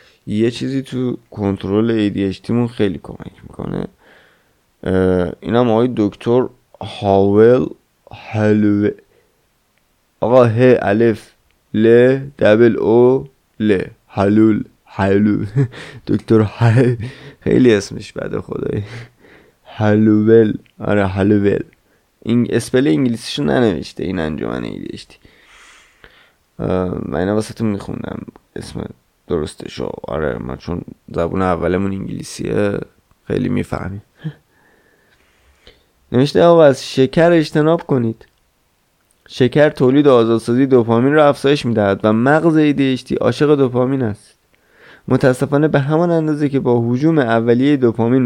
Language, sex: Persian, male